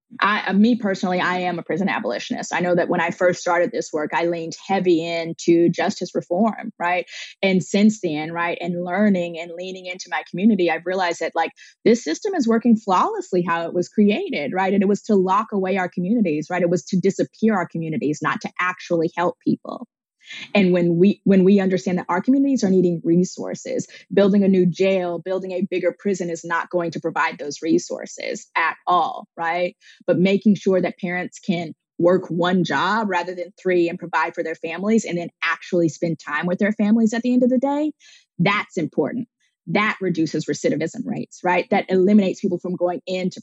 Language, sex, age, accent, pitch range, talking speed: French, female, 20-39, American, 170-205 Hz, 200 wpm